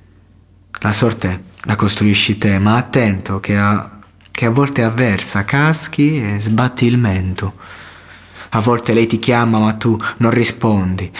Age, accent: 20-39, native